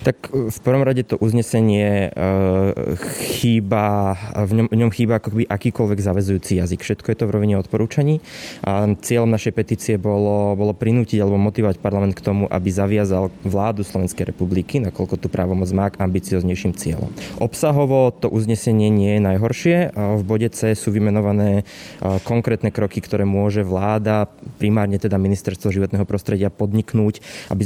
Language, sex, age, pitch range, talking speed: Slovak, male, 20-39, 100-115 Hz, 150 wpm